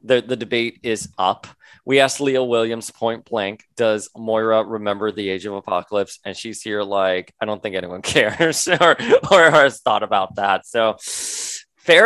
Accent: American